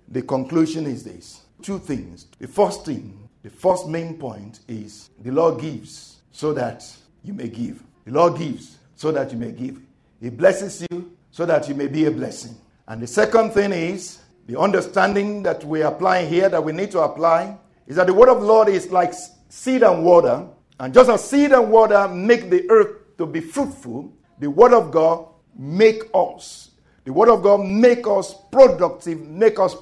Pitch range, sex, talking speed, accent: 165-250 Hz, male, 190 wpm, Nigerian